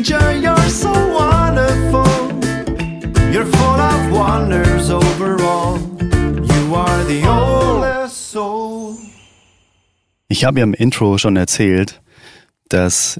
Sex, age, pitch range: male, 30-49, 95-130 Hz